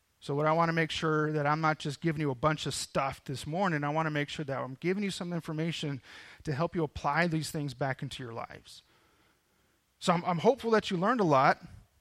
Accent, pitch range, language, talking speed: American, 130-175 Hz, English, 245 wpm